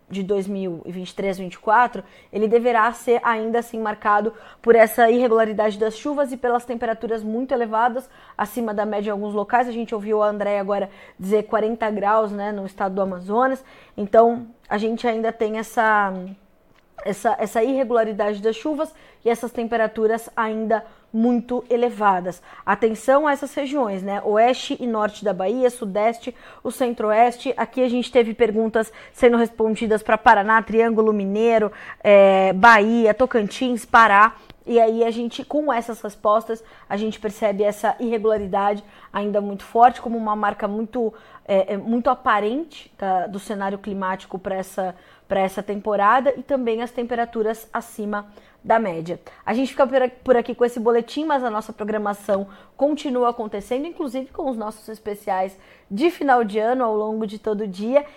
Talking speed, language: 155 wpm, Portuguese